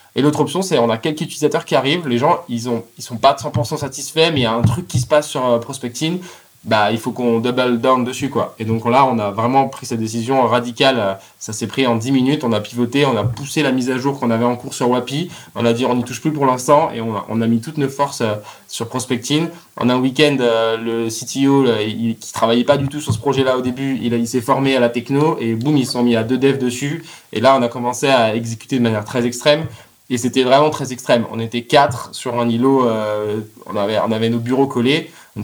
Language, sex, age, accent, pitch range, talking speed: French, male, 20-39, French, 115-140 Hz, 265 wpm